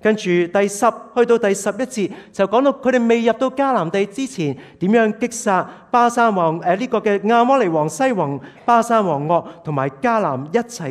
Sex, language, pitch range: male, Chinese, 150-230 Hz